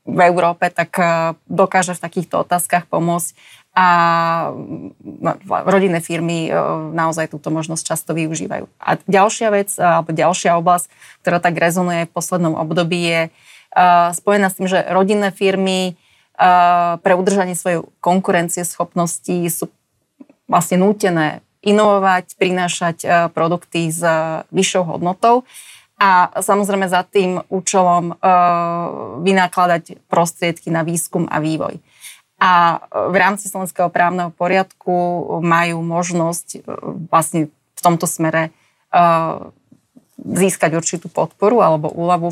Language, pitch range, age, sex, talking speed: Slovak, 165-185 Hz, 20-39, female, 115 wpm